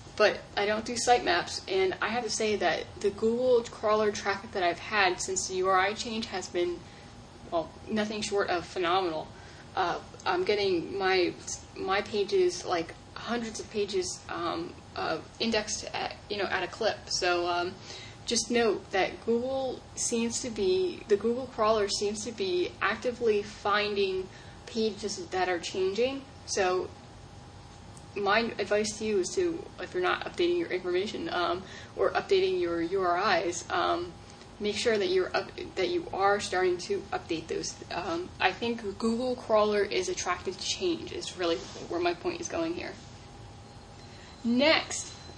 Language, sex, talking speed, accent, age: English, female, 155 wpm, American, 10-29